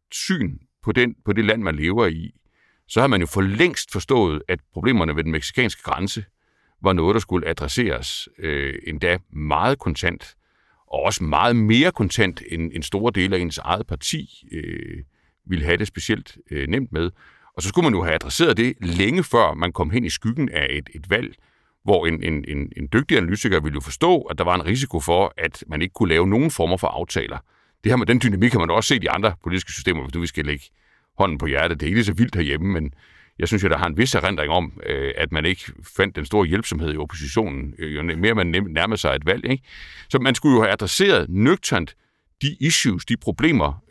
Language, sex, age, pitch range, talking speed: Danish, male, 60-79, 75-105 Hz, 220 wpm